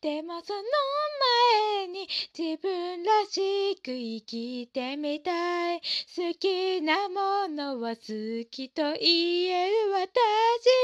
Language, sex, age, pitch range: Japanese, female, 20-39, 315-450 Hz